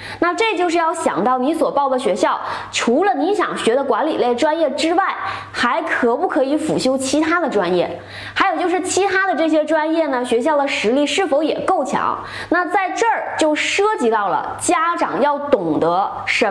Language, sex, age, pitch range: Chinese, female, 20-39, 245-345 Hz